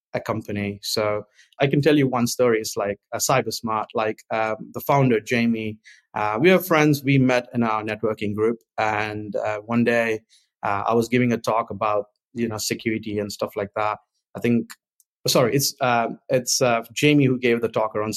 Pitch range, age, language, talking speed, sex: 105-120 Hz, 20-39, English, 200 wpm, male